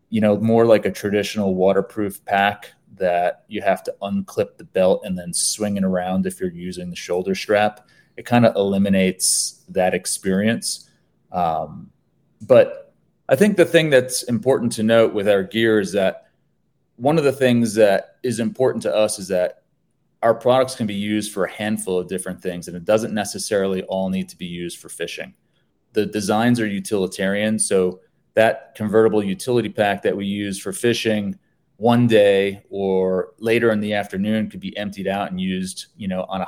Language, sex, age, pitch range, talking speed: English, male, 30-49, 95-115 Hz, 185 wpm